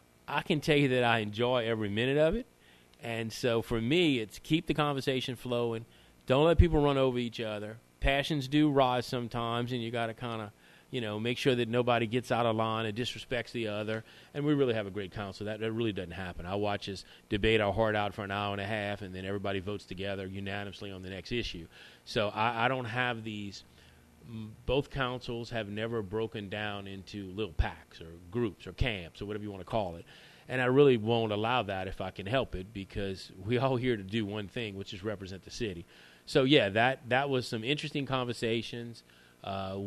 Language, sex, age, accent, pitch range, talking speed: English, male, 40-59, American, 100-125 Hz, 220 wpm